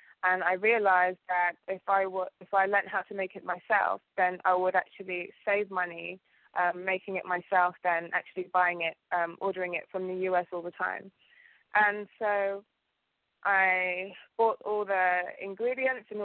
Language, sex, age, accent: English, female, 20-39, British